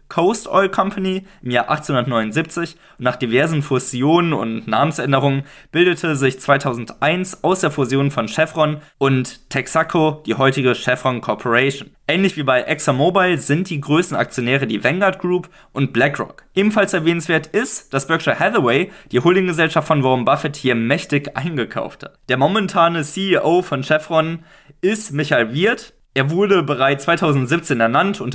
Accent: German